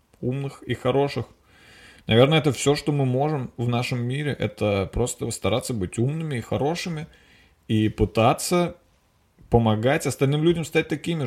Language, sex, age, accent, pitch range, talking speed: Russian, male, 20-39, native, 125-165 Hz, 140 wpm